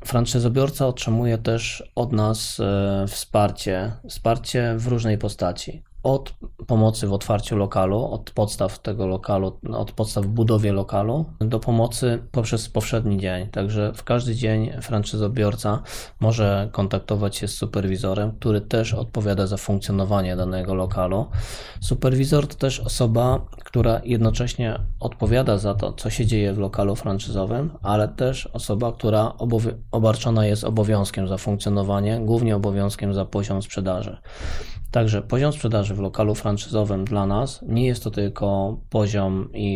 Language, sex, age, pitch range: Polish, male, 20-39, 100-115 Hz